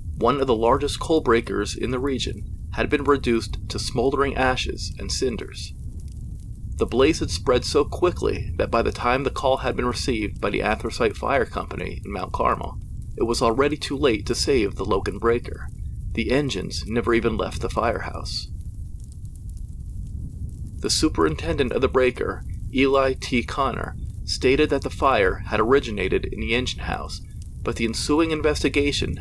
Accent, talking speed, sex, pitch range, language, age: American, 160 wpm, male, 100-135 Hz, English, 40-59